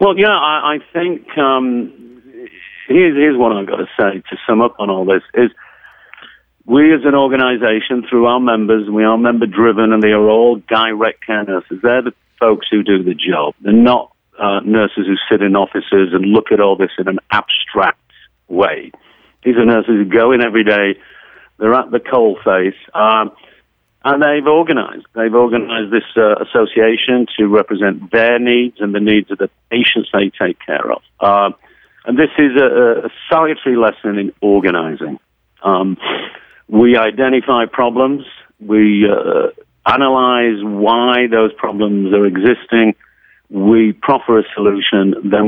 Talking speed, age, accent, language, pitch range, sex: 160 wpm, 50-69, British, English, 105-125 Hz, male